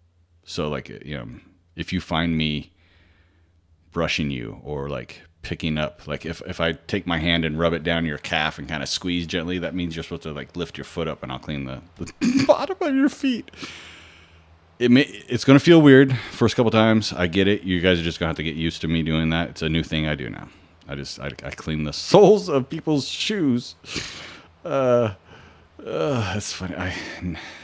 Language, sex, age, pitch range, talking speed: English, male, 30-49, 80-100 Hz, 220 wpm